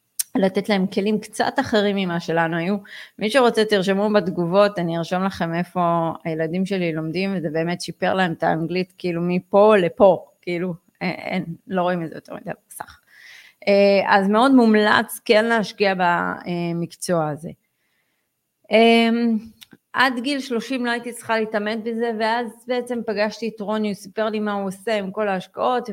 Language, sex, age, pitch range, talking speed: Hebrew, female, 30-49, 175-215 Hz, 150 wpm